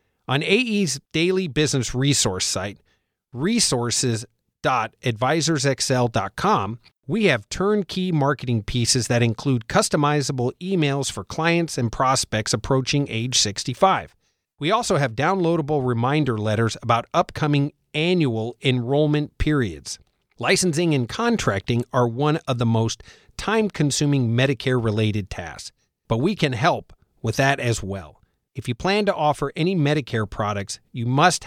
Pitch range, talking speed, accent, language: 115-155 Hz, 120 wpm, American, English